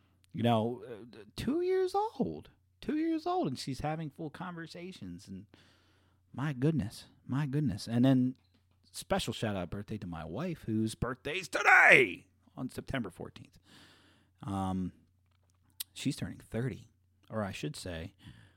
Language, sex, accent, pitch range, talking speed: English, male, American, 95-150 Hz, 130 wpm